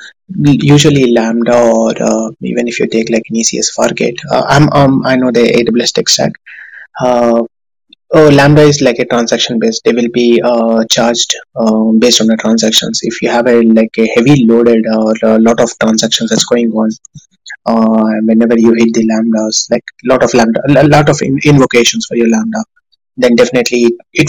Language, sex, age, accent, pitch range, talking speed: Tamil, male, 20-39, native, 115-130 Hz, 190 wpm